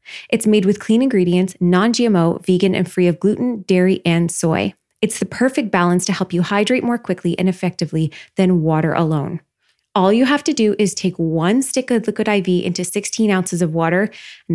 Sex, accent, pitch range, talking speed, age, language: female, American, 175-220 Hz, 195 wpm, 20-39, English